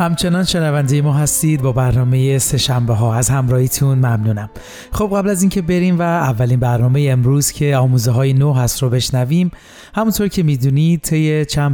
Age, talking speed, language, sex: 30-49, 170 wpm, Persian, male